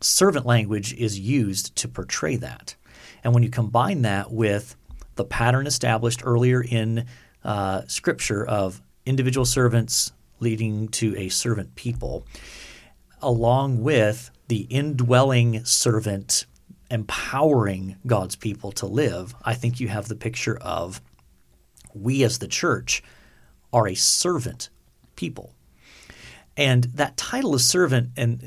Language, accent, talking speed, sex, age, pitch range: English, American, 125 wpm, male, 40-59, 100-125 Hz